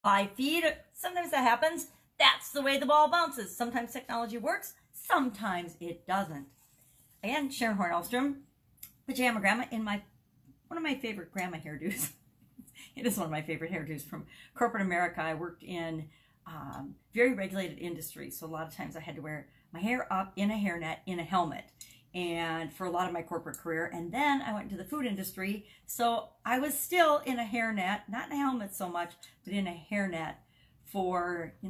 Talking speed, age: 190 wpm, 40-59